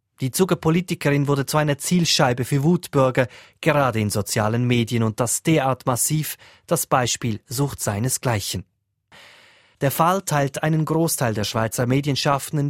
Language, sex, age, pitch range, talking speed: German, male, 30-49, 115-150 Hz, 130 wpm